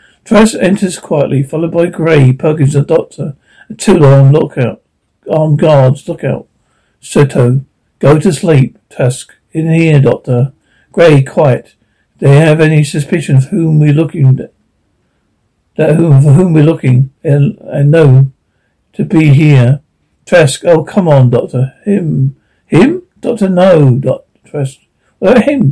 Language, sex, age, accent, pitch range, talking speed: English, male, 50-69, British, 135-165 Hz, 135 wpm